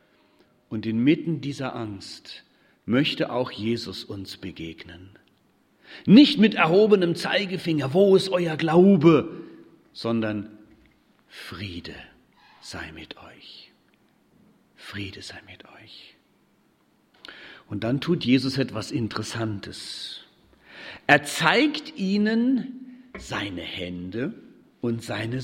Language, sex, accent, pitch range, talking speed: German, male, German, 105-175 Hz, 90 wpm